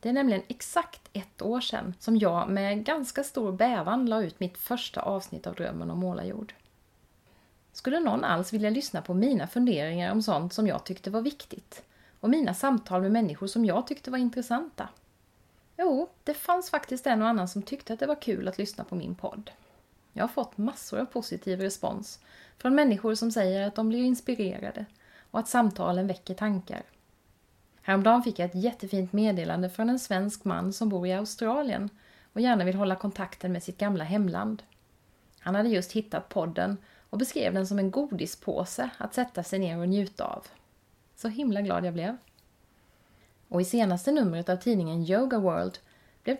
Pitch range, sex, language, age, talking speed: 185-240 Hz, female, Swedish, 30-49, 180 wpm